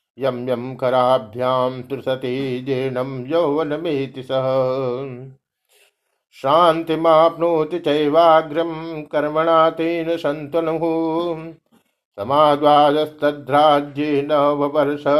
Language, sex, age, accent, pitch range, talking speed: Hindi, male, 50-69, native, 140-165 Hz, 50 wpm